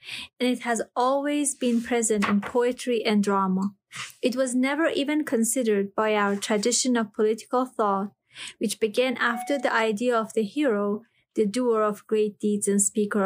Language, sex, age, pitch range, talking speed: Persian, female, 30-49, 205-245 Hz, 165 wpm